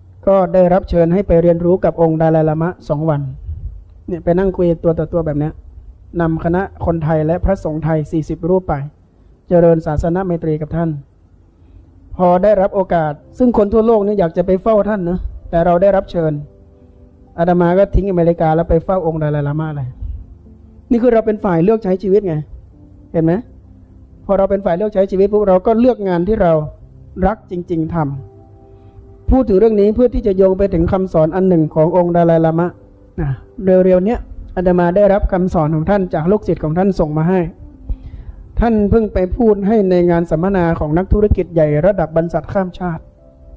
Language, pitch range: Thai, 145-190 Hz